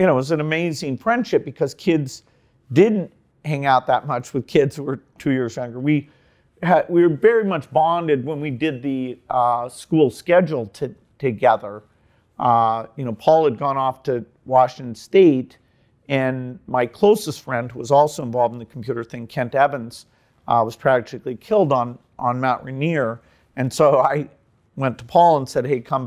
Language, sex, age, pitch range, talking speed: Persian, male, 50-69, 125-155 Hz, 180 wpm